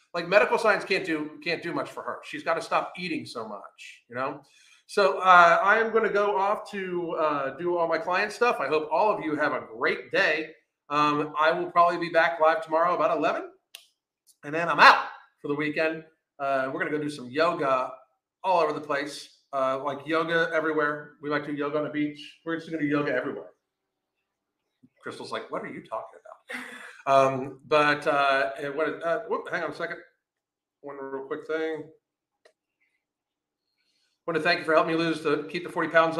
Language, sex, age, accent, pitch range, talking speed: English, male, 40-59, American, 150-190 Hz, 205 wpm